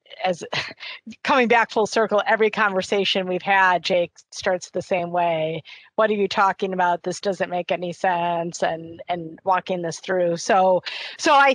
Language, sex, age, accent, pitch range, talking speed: English, female, 40-59, American, 180-225 Hz, 165 wpm